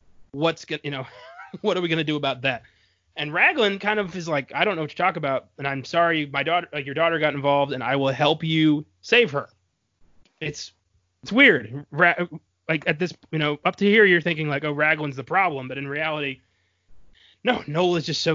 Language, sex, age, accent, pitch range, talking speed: English, male, 20-39, American, 135-165 Hz, 220 wpm